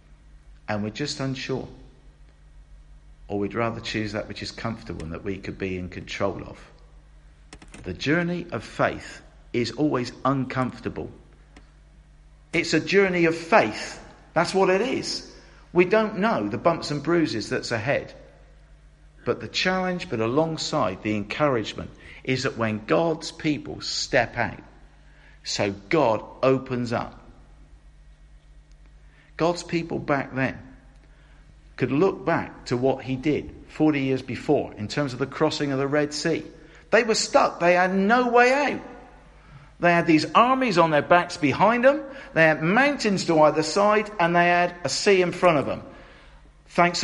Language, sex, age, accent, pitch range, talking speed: English, male, 50-69, British, 120-175 Hz, 150 wpm